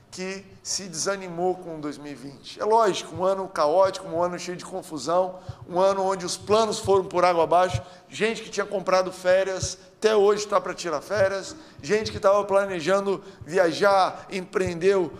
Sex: male